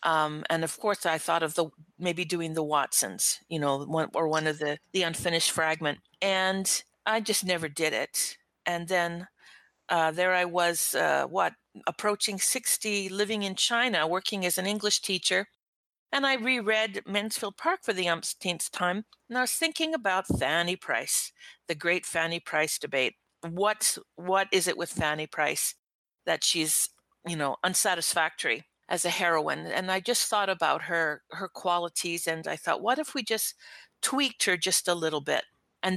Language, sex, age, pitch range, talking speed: English, female, 50-69, 160-200 Hz, 175 wpm